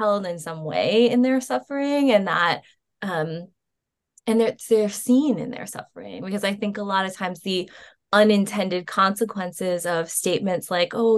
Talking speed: 160 wpm